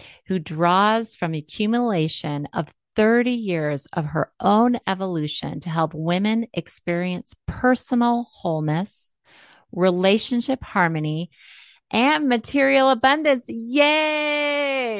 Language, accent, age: English, American, 30-49